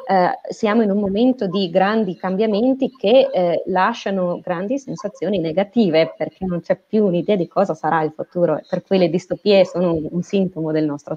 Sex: female